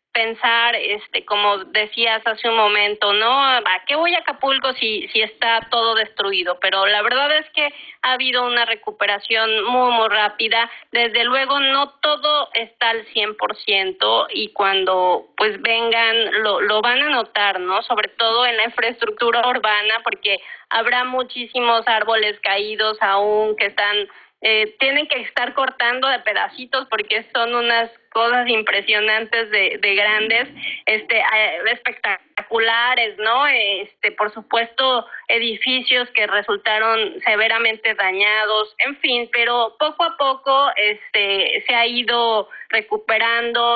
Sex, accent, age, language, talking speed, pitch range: female, Mexican, 30-49, Spanish, 135 wpm, 215-245 Hz